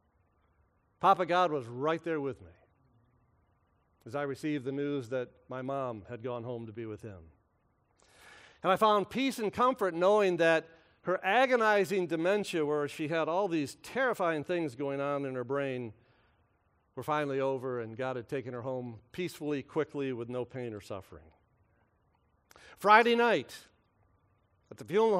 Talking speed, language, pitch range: 155 wpm, English, 100-155 Hz